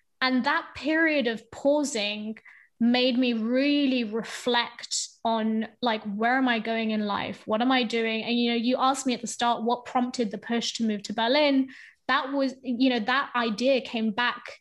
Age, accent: 20-39, British